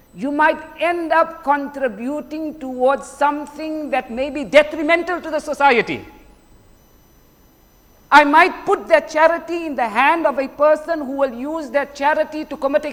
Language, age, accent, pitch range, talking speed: English, 50-69, Indian, 250-310 Hz, 155 wpm